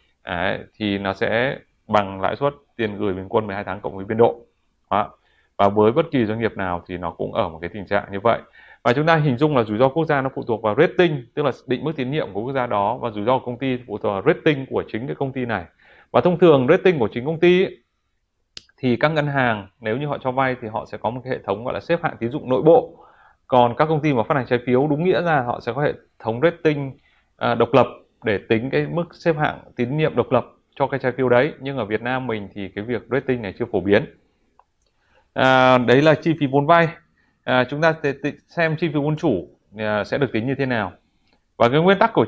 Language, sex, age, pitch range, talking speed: Vietnamese, male, 20-39, 110-150 Hz, 265 wpm